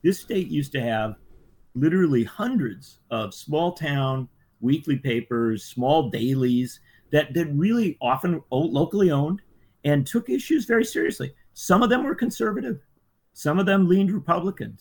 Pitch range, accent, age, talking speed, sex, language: 115-160 Hz, American, 50-69, 140 wpm, male, English